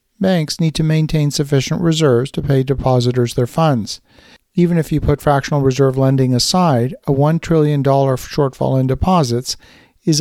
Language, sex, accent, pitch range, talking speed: English, male, American, 130-155 Hz, 155 wpm